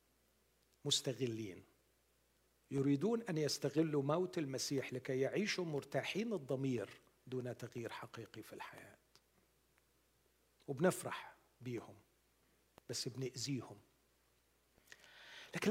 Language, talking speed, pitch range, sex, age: Arabic, 75 wpm, 140-215 Hz, male, 50-69